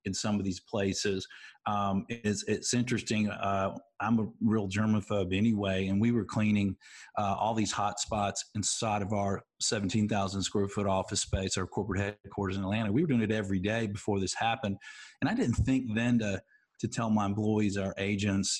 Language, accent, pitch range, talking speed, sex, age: English, American, 100-115 Hz, 185 wpm, male, 40-59